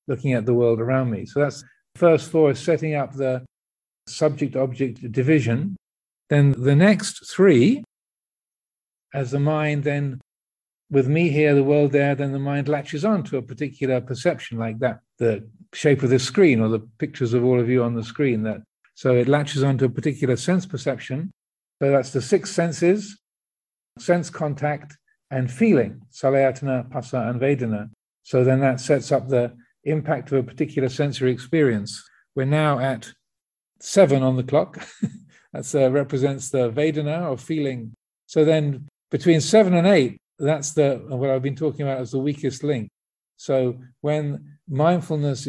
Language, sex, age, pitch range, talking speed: English, male, 50-69, 125-150 Hz, 165 wpm